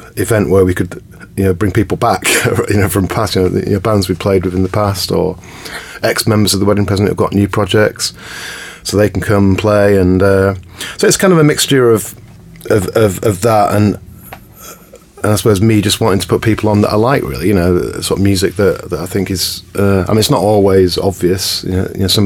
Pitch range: 90-105 Hz